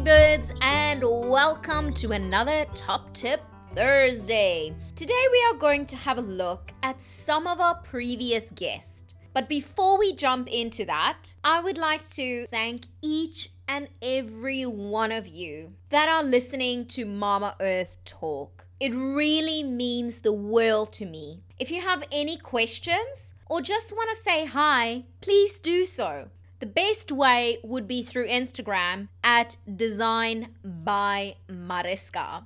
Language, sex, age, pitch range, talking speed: English, female, 20-39, 215-305 Hz, 140 wpm